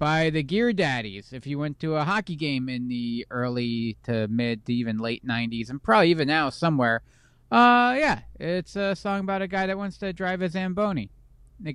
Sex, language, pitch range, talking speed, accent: male, English, 110-170 Hz, 205 wpm, American